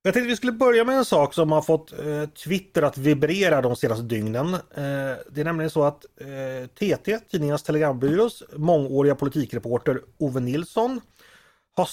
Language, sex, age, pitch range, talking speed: Swedish, male, 30-49, 125-170 Hz, 170 wpm